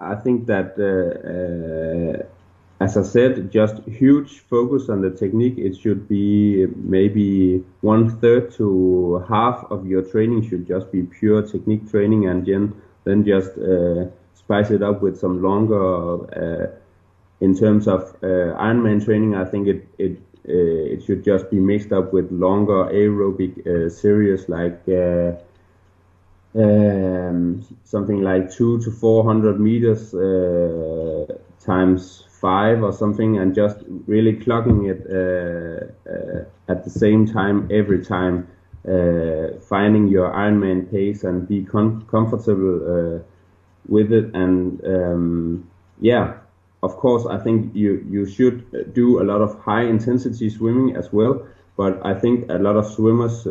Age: 30-49